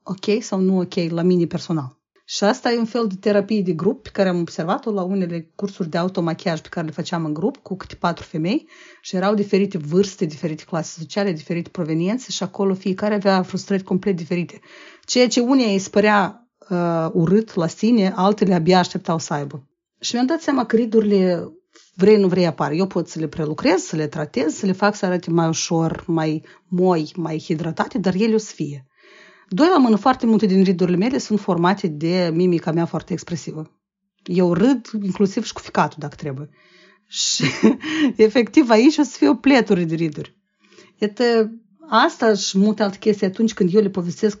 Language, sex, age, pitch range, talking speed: Romanian, female, 40-59, 175-220 Hz, 195 wpm